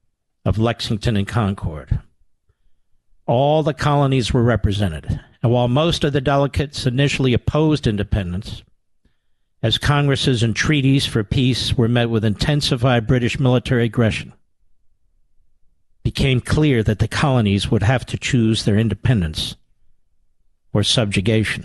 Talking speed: 125 wpm